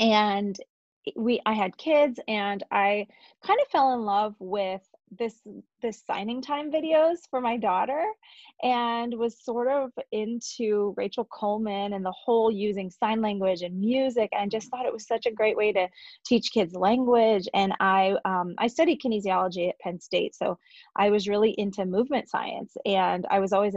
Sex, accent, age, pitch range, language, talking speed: female, American, 30-49, 200-245 Hz, English, 175 wpm